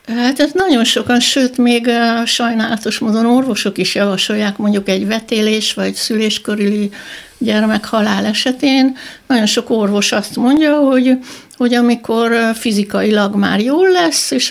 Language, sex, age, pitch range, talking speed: Hungarian, female, 60-79, 200-245 Hz, 130 wpm